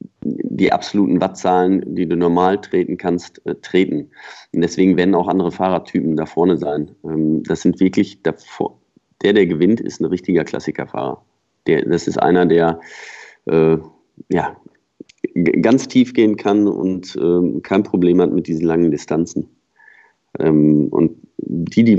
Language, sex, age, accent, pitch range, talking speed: German, male, 40-59, German, 80-100 Hz, 140 wpm